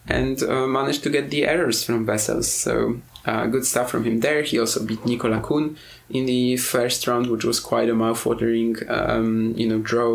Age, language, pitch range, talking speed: 20-39, English, 110-125 Hz, 200 wpm